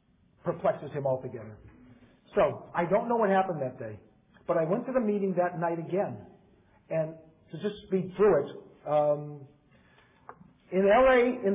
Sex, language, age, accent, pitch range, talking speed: male, English, 50-69, American, 150-195 Hz, 155 wpm